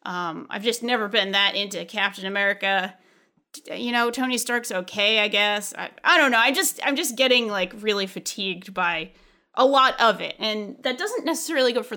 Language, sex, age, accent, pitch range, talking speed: English, female, 30-49, American, 195-260 Hz, 195 wpm